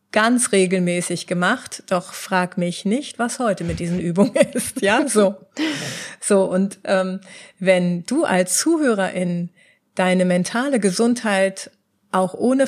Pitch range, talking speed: 190-235 Hz, 130 wpm